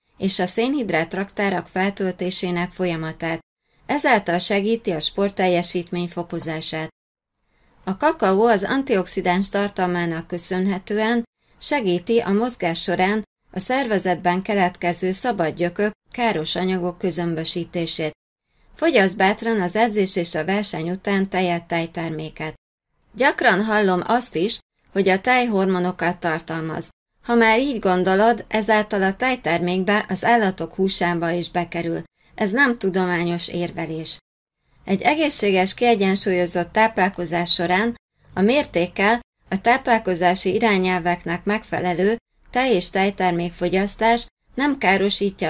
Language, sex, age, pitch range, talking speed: Hungarian, female, 30-49, 175-215 Hz, 105 wpm